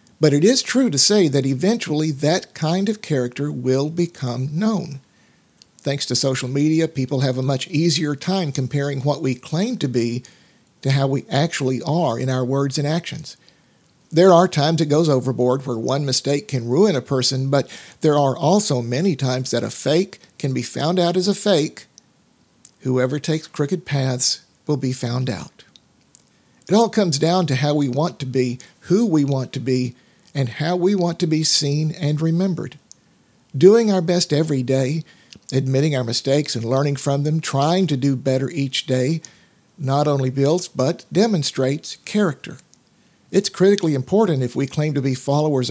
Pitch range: 130-175 Hz